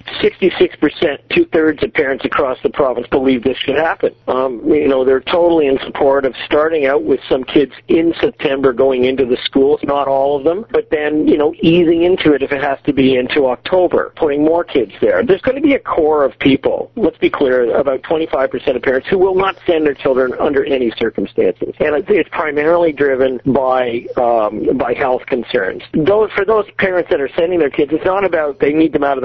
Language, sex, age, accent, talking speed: English, male, 50-69, American, 210 wpm